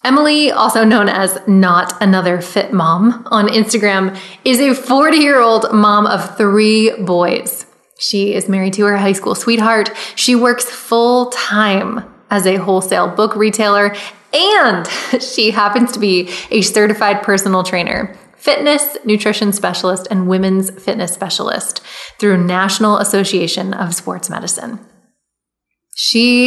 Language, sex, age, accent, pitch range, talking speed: English, female, 20-39, American, 195-235 Hz, 135 wpm